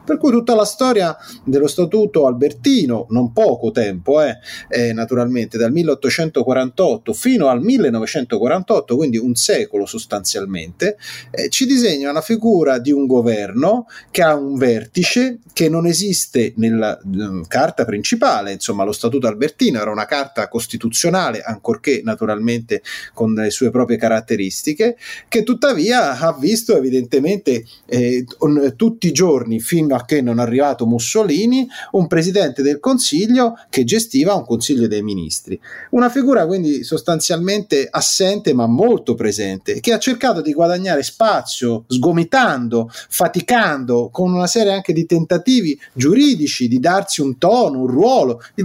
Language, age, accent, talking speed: Italian, 30-49, native, 135 wpm